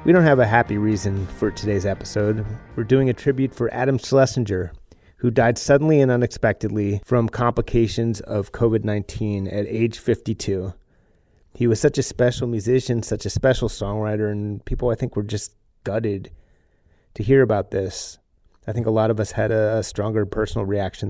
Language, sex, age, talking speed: English, male, 30-49, 170 wpm